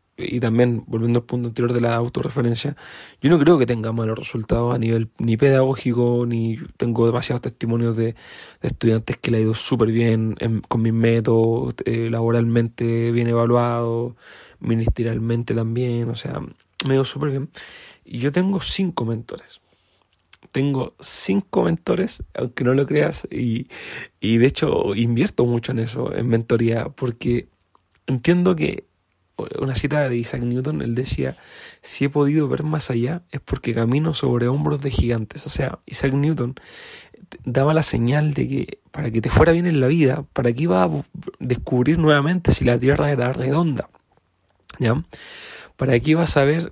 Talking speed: 165 wpm